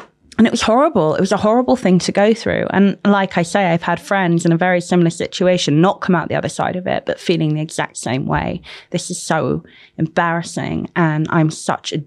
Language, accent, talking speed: English, British, 230 wpm